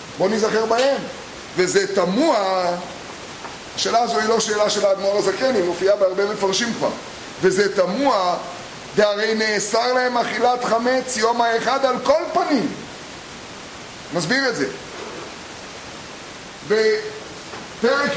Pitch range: 200-255 Hz